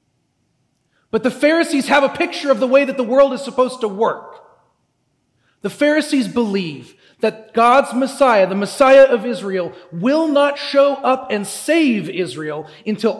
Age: 40-59